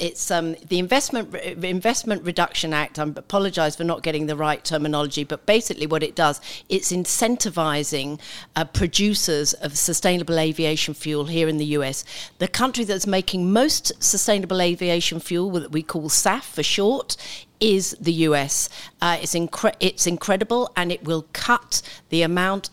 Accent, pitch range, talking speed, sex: British, 155-195 Hz, 160 wpm, female